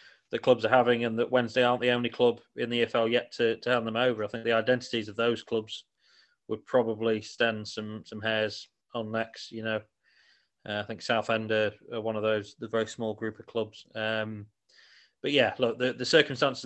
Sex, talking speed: male, 215 wpm